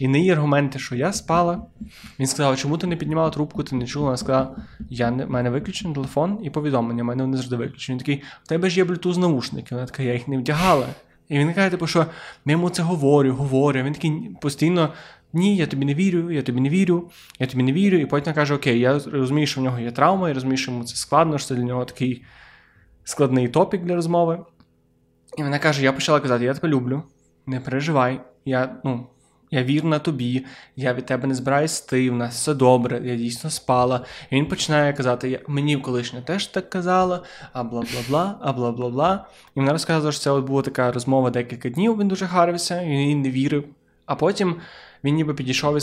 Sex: male